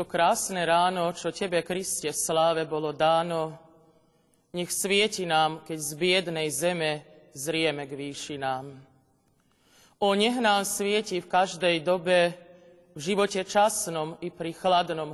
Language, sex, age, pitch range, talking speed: Slovak, male, 30-49, 160-190 Hz, 125 wpm